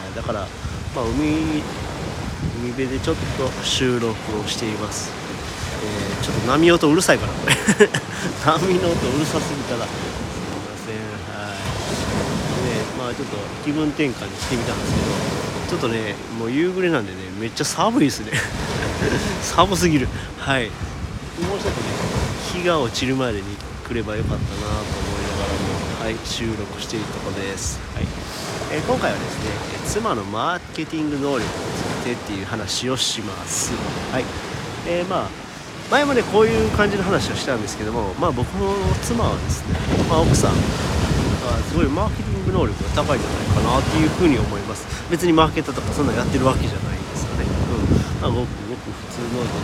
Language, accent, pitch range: Japanese, native, 100-145 Hz